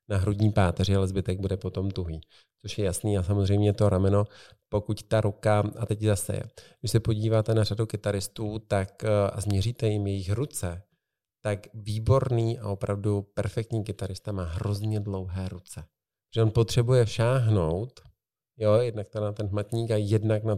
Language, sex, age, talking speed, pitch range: Czech, male, 40-59, 165 wpm, 100-115 Hz